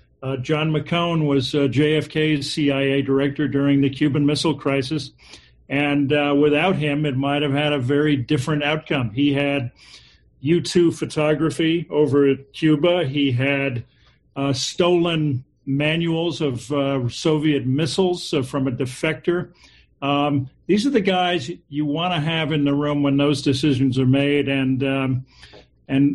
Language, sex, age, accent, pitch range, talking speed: English, male, 50-69, American, 140-160 Hz, 150 wpm